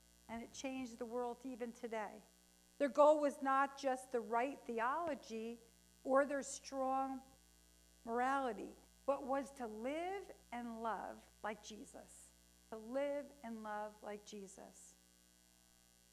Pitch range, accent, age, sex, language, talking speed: 205-265 Hz, American, 50-69, female, English, 125 wpm